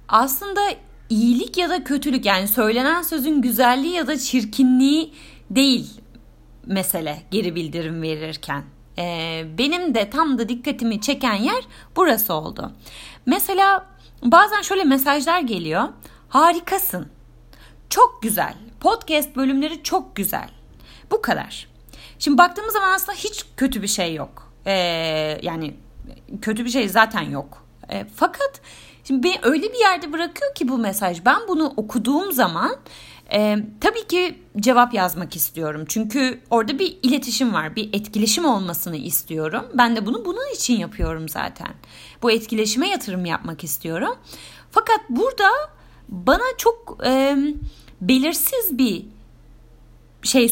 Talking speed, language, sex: 125 wpm, Turkish, female